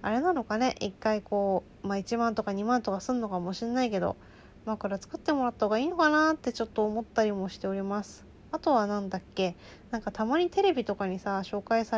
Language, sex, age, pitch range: Japanese, female, 20-39, 200-285 Hz